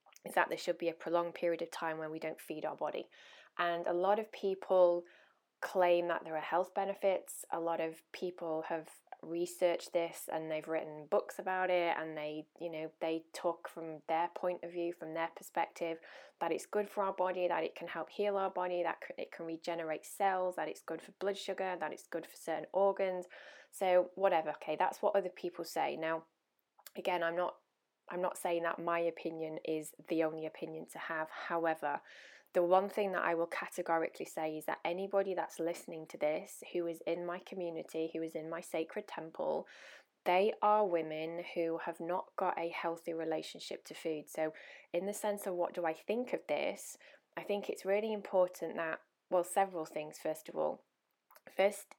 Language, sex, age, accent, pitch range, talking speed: English, female, 20-39, British, 165-190 Hz, 195 wpm